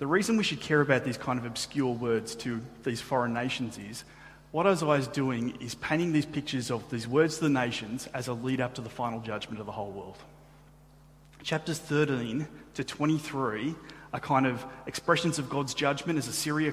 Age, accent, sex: 30-49, Australian, male